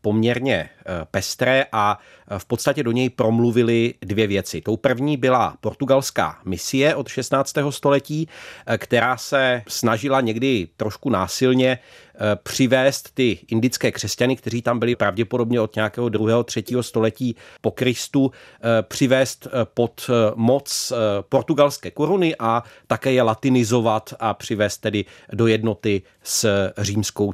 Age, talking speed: 40-59, 125 wpm